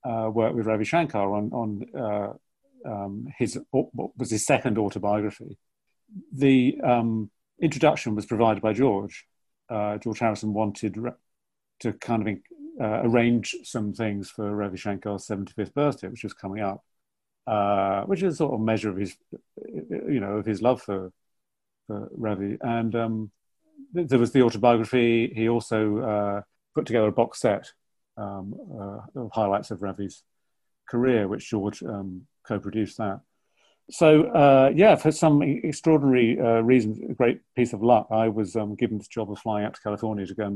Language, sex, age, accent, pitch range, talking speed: English, male, 50-69, British, 105-130 Hz, 170 wpm